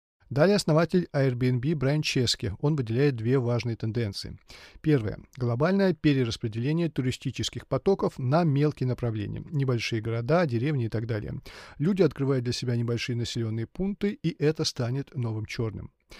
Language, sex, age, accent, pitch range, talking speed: Russian, male, 40-59, native, 120-155 Hz, 135 wpm